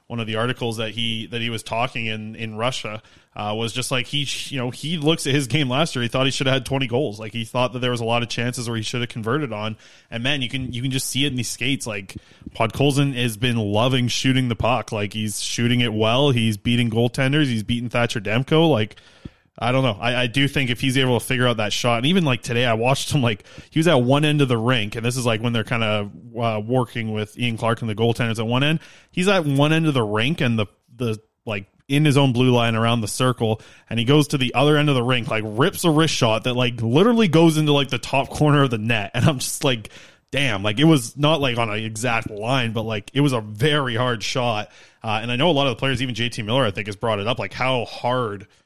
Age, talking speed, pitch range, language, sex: 20-39, 275 wpm, 115-135 Hz, English, male